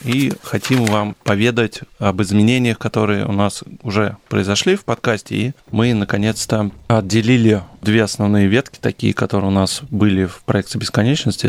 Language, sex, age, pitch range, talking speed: Russian, male, 20-39, 100-120 Hz, 145 wpm